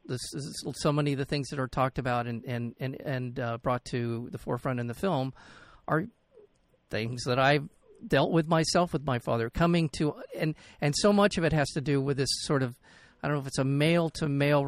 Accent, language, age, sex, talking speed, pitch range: American, English, 50-69, male, 235 wpm, 125-150 Hz